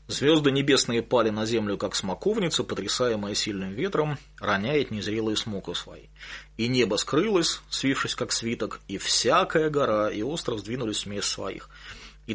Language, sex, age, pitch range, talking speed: English, male, 30-49, 100-125 Hz, 145 wpm